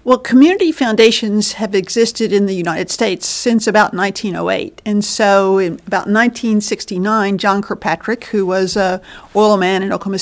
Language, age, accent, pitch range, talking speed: English, 50-69, American, 195-230 Hz, 155 wpm